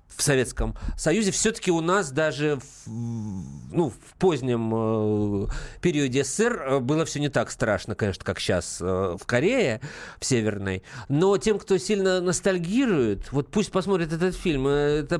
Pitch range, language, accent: 120-165 Hz, Russian, native